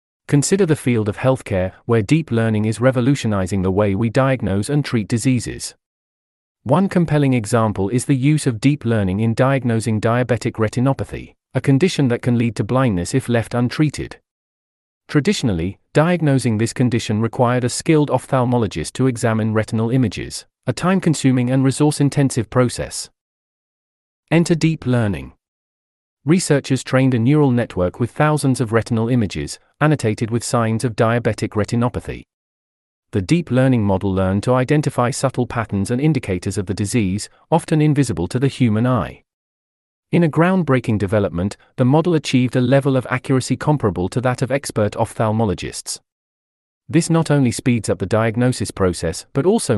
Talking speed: 150 wpm